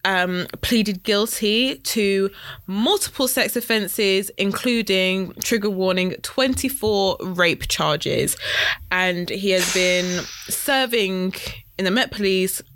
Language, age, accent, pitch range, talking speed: English, 20-39, British, 170-210 Hz, 105 wpm